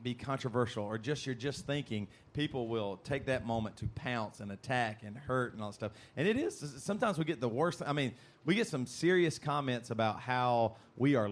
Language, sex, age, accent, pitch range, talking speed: English, male, 40-59, American, 115-145 Hz, 215 wpm